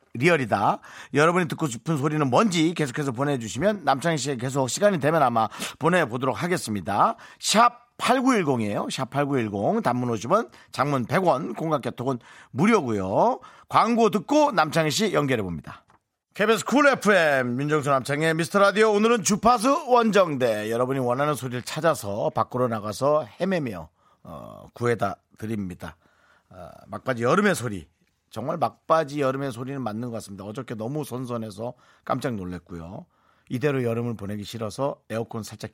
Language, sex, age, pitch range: Korean, male, 40-59, 110-155 Hz